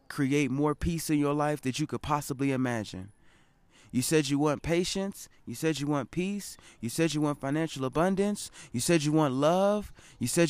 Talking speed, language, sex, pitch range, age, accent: 195 wpm, English, male, 120-155 Hz, 20-39, American